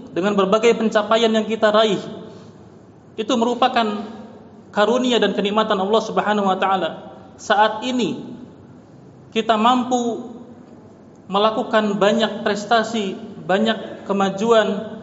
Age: 30-49